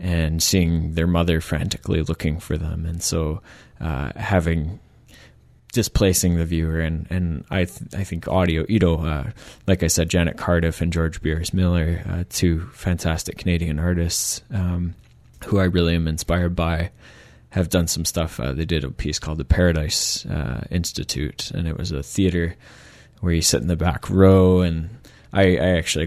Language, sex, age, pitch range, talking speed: English, male, 20-39, 80-90 Hz, 175 wpm